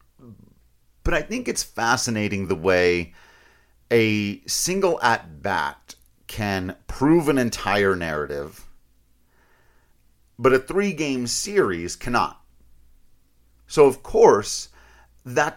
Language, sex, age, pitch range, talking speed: English, male, 40-59, 85-115 Hz, 95 wpm